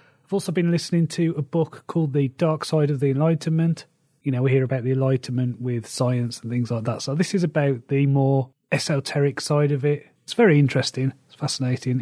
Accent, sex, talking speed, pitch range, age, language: British, male, 210 wpm, 130-155 Hz, 30-49, English